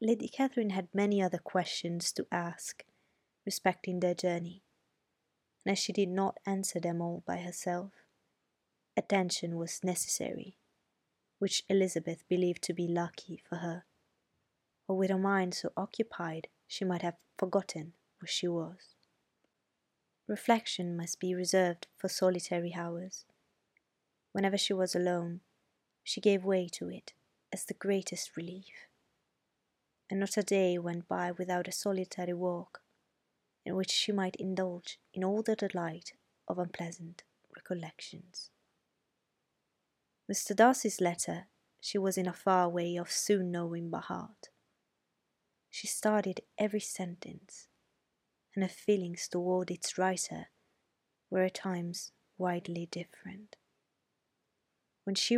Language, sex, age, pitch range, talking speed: Italian, female, 20-39, 175-195 Hz, 130 wpm